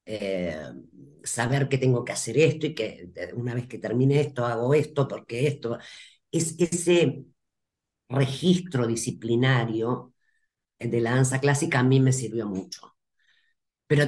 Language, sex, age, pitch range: Spanish, female, 40-59, 115-150 Hz